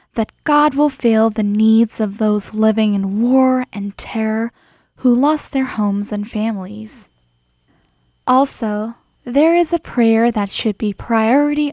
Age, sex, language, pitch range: 10-29, female, Korean, 200-240 Hz